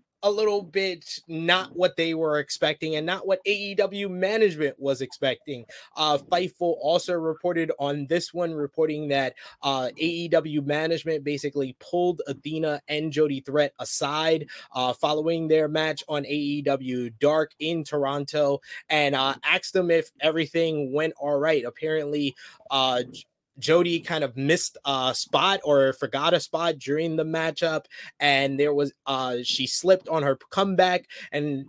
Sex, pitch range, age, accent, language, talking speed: male, 140-165 Hz, 20-39, American, English, 145 wpm